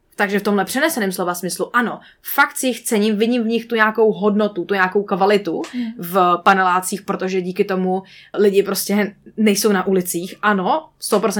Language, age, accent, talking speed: Czech, 20-39, native, 165 wpm